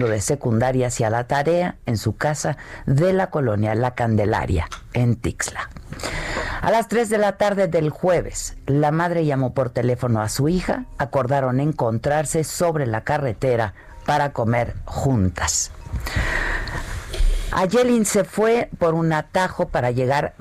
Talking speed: 140 wpm